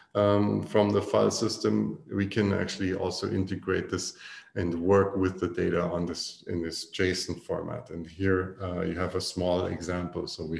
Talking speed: 180 wpm